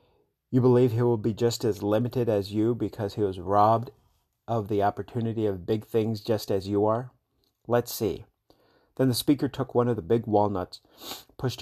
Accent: American